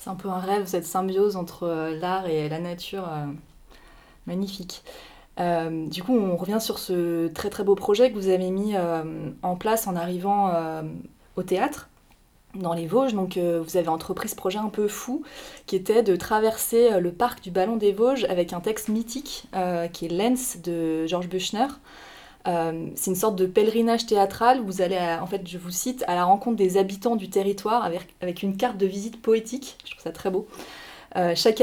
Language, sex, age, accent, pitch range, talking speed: French, female, 20-39, French, 180-225 Hz, 205 wpm